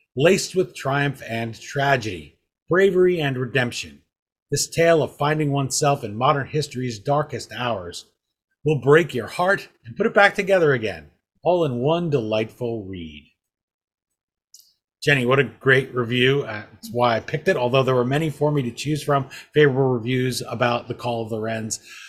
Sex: male